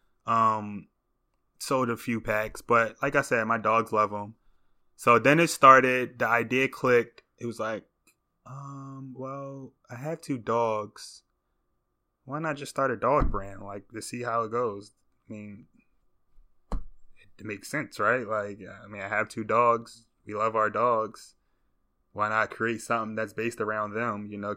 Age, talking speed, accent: 20-39, 170 wpm, American